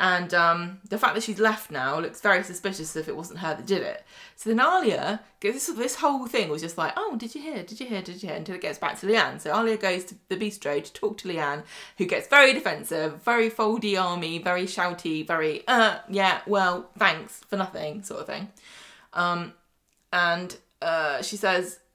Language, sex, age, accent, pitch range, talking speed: English, female, 20-39, British, 175-220 Hz, 220 wpm